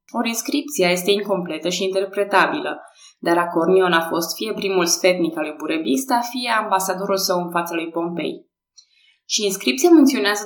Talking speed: 150 wpm